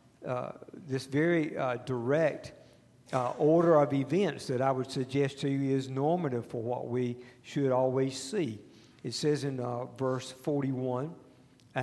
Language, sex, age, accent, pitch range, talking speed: English, male, 50-69, American, 125-160 Hz, 145 wpm